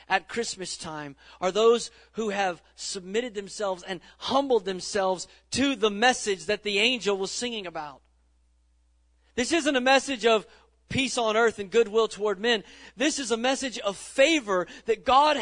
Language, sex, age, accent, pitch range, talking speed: English, male, 40-59, American, 180-250 Hz, 160 wpm